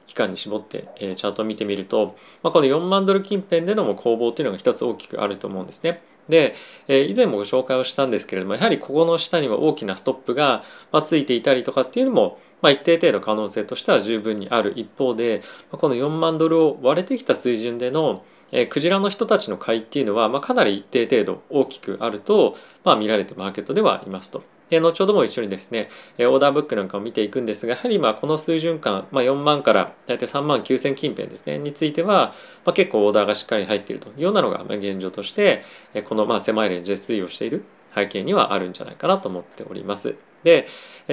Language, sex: Japanese, male